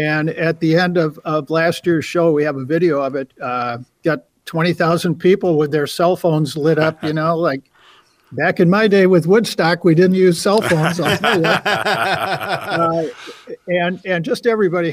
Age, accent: 50-69, American